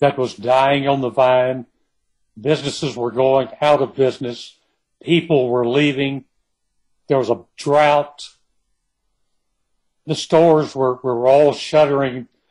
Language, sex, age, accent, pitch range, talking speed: English, male, 60-79, American, 125-150 Hz, 120 wpm